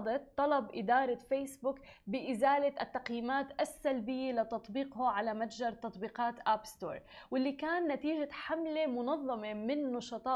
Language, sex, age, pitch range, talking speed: Arabic, female, 20-39, 225-280 Hz, 110 wpm